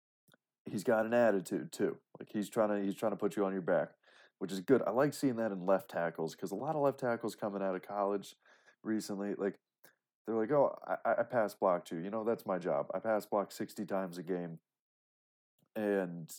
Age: 30-49